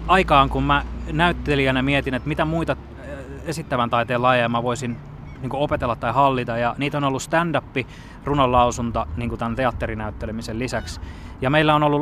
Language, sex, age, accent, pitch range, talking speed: Finnish, male, 20-39, native, 115-140 Hz, 150 wpm